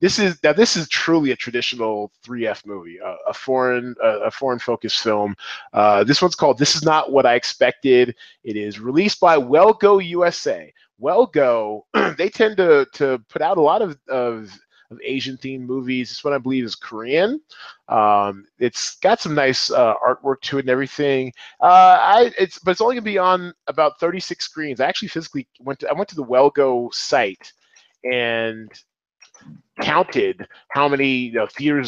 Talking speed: 185 wpm